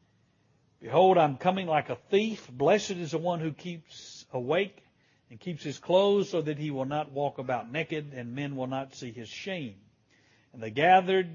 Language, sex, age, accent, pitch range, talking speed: English, male, 60-79, American, 130-190 Hz, 190 wpm